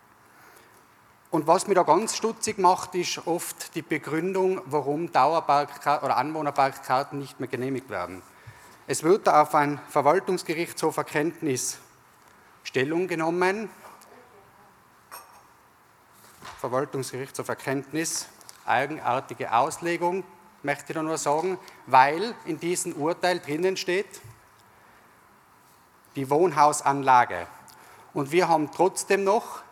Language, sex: German, male